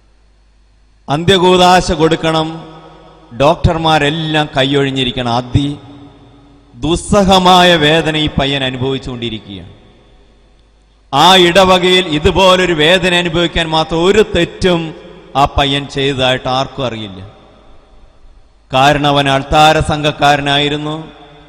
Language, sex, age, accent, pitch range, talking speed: Malayalam, male, 30-49, native, 130-160 Hz, 75 wpm